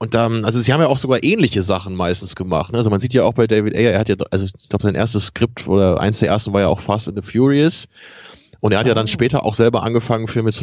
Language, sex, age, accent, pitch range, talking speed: German, male, 20-39, German, 95-115 Hz, 300 wpm